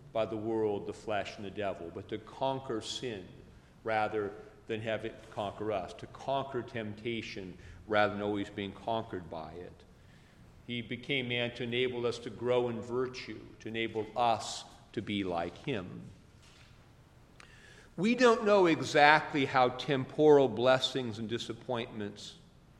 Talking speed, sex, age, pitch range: 140 wpm, male, 50-69, 105-130 Hz